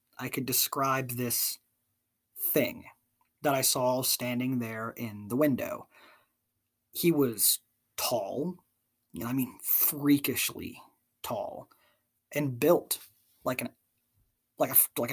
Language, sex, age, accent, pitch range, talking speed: English, male, 20-39, American, 120-165 Hz, 105 wpm